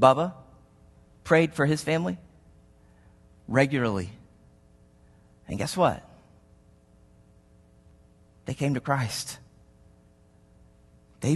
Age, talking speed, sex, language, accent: 30-49, 75 wpm, male, English, American